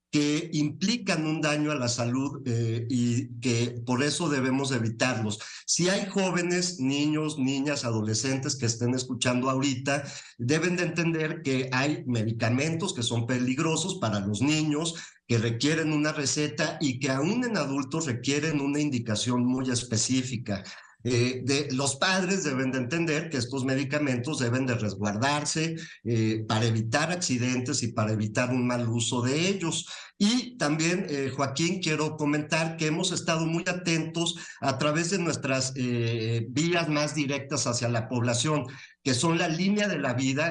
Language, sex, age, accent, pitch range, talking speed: Spanish, male, 50-69, Mexican, 125-160 Hz, 155 wpm